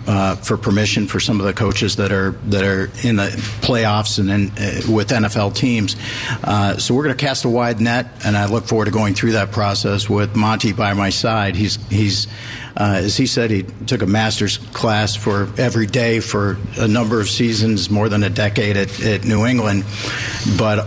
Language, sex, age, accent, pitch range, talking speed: English, male, 50-69, American, 100-115 Hz, 205 wpm